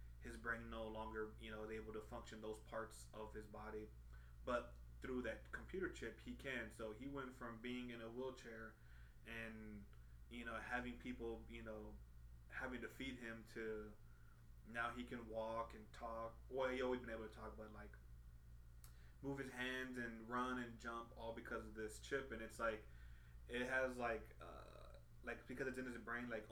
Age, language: 20-39, English